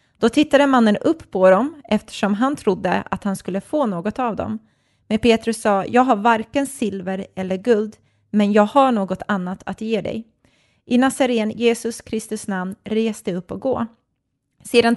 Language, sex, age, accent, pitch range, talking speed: Swedish, female, 30-49, native, 190-235 Hz, 170 wpm